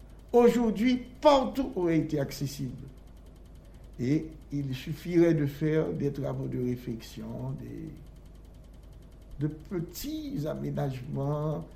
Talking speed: 90 wpm